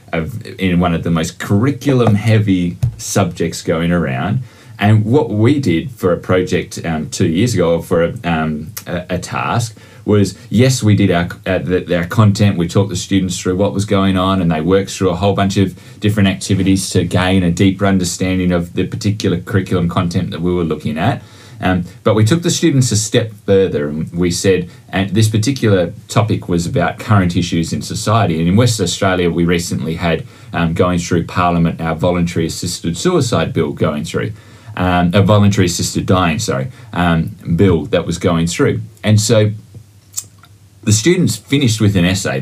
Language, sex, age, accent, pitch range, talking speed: English, male, 20-39, Australian, 90-110 Hz, 185 wpm